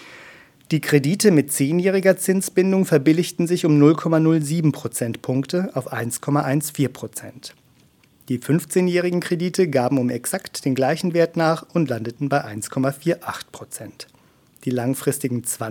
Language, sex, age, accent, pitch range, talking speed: German, male, 40-59, German, 125-160 Hz, 110 wpm